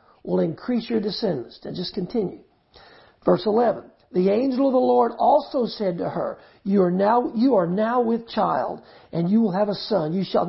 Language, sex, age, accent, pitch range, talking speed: English, male, 50-69, American, 170-250 Hz, 200 wpm